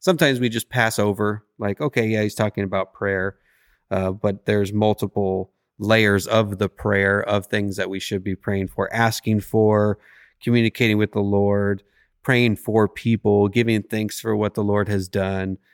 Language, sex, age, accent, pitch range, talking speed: English, male, 30-49, American, 95-110 Hz, 170 wpm